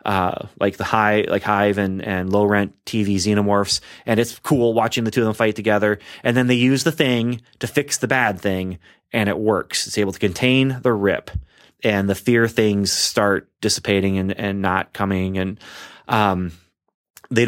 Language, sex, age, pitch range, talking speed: English, male, 30-49, 100-120 Hz, 190 wpm